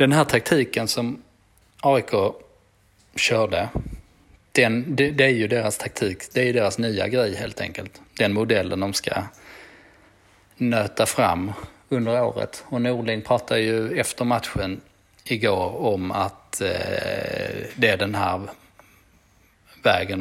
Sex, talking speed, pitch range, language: male, 130 wpm, 100-125 Hz, Swedish